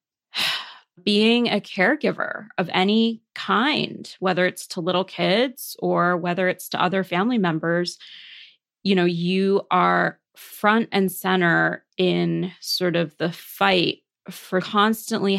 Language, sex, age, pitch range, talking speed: English, female, 20-39, 180-215 Hz, 125 wpm